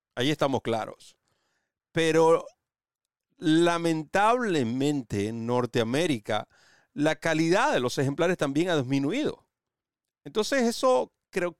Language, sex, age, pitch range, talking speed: Spanish, male, 40-59, 115-165 Hz, 95 wpm